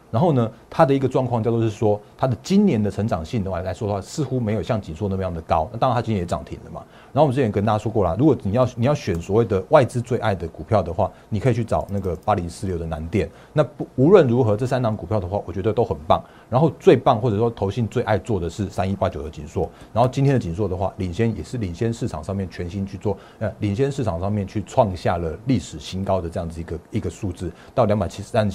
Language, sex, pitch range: Chinese, male, 90-120 Hz